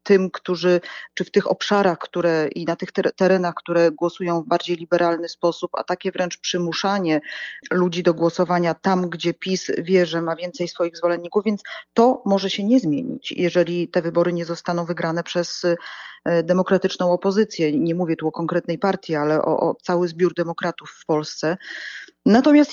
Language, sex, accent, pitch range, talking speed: Polish, female, native, 170-205 Hz, 165 wpm